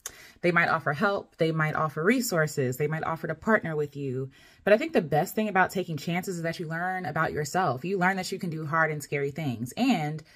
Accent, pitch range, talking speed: American, 155-220 Hz, 240 wpm